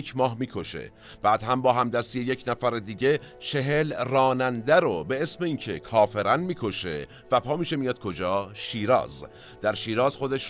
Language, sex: Persian, male